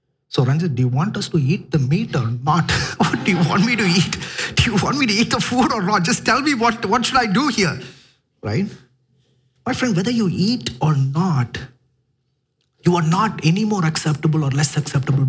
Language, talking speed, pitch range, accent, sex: English, 215 wpm, 130-180 Hz, Indian, male